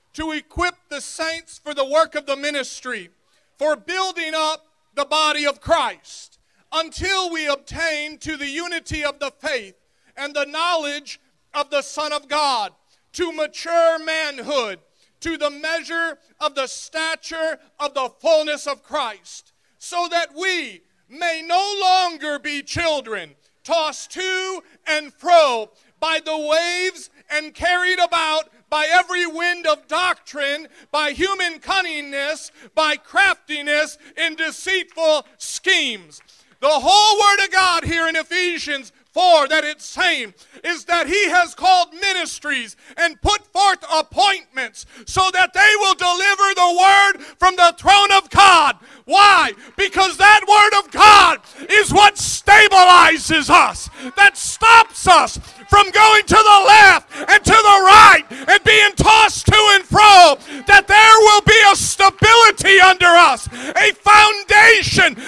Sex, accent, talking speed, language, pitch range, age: male, American, 140 wpm, English, 300-385 Hz, 40-59